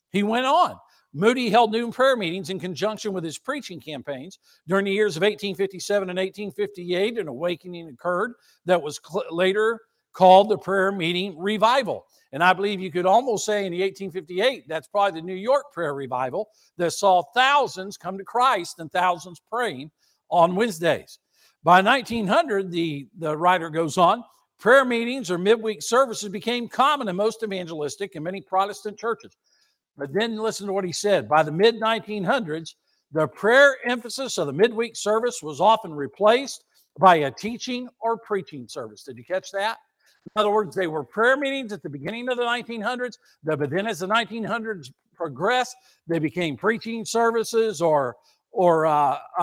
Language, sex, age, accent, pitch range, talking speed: English, male, 60-79, American, 175-230 Hz, 165 wpm